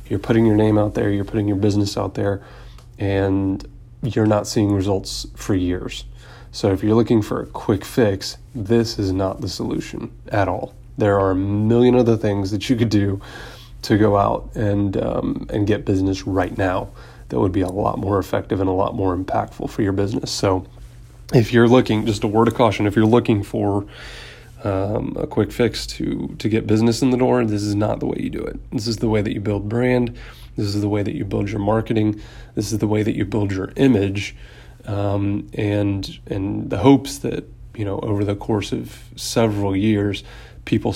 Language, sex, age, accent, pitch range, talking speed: English, male, 30-49, American, 100-115 Hz, 210 wpm